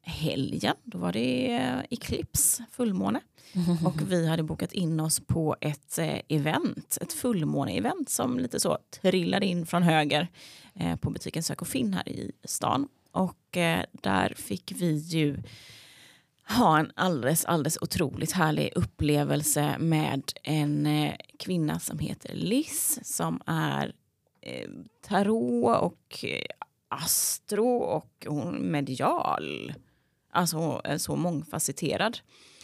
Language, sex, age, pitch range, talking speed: Swedish, female, 30-49, 145-185 Hz, 115 wpm